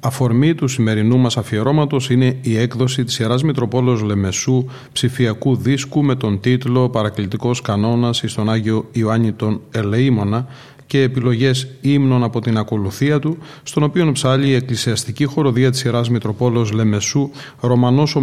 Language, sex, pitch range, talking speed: Greek, male, 115-135 Hz, 140 wpm